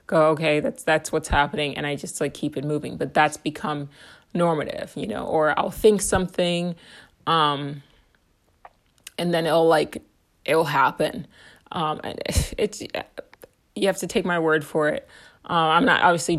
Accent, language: American, English